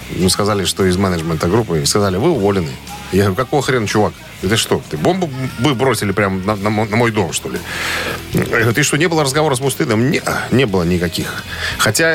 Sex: male